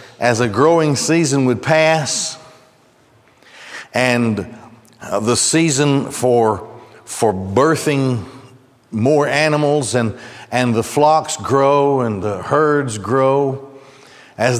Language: English